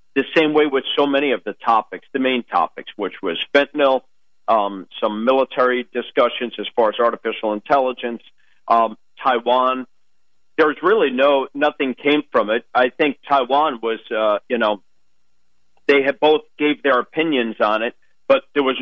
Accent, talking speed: American, 165 wpm